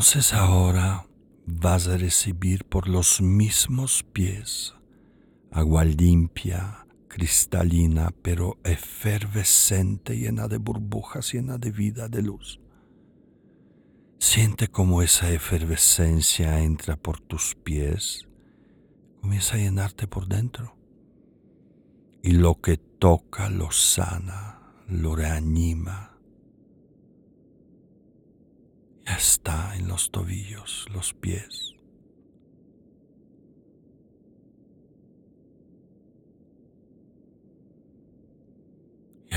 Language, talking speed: Spanish, 80 wpm